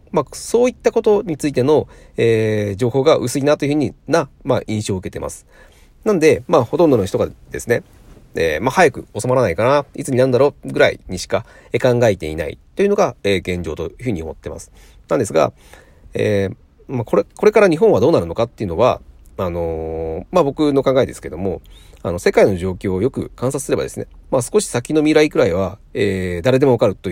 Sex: male